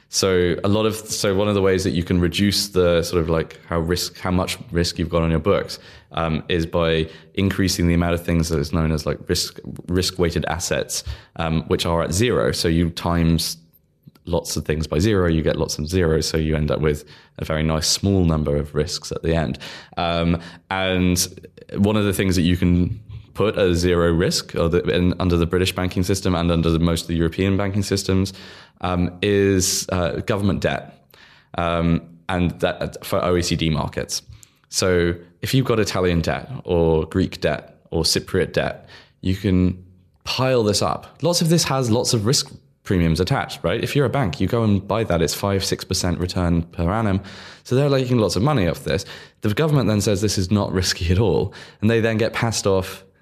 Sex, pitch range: male, 85-100 Hz